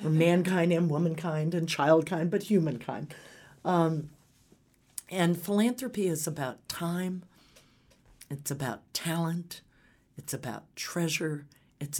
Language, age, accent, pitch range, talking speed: English, 50-69, American, 130-170 Hz, 105 wpm